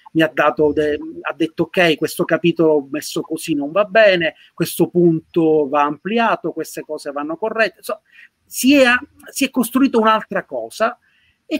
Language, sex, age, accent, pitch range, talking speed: Italian, male, 30-49, native, 155-200 Hz, 160 wpm